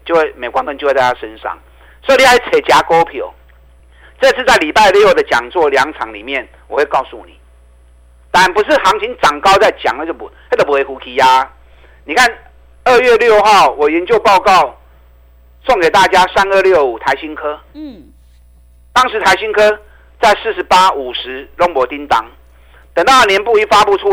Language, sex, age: Chinese, male, 50-69